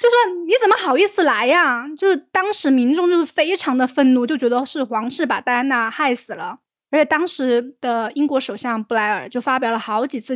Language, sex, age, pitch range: Chinese, female, 20-39, 230-285 Hz